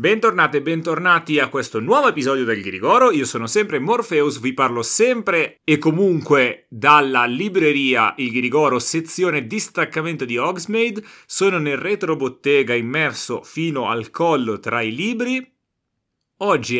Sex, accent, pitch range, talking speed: male, native, 135-190 Hz, 135 wpm